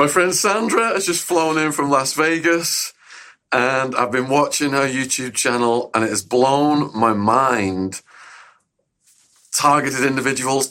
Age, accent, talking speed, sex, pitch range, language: 40-59, British, 140 wpm, male, 115-140 Hz, English